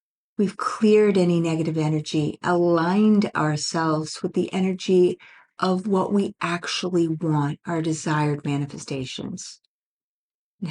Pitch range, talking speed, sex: 160-195 Hz, 105 wpm, female